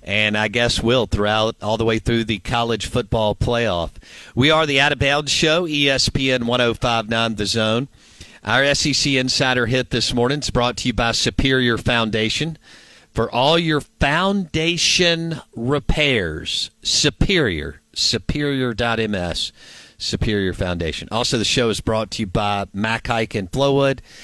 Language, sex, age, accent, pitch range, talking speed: English, male, 50-69, American, 100-125 Hz, 145 wpm